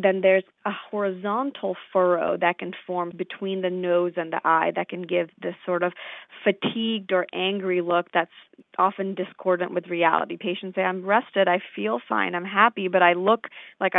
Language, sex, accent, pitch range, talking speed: English, female, American, 175-195 Hz, 180 wpm